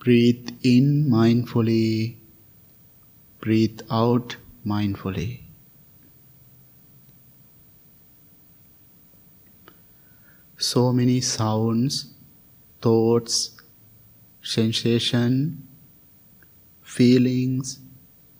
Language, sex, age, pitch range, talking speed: English, male, 50-69, 115-130 Hz, 40 wpm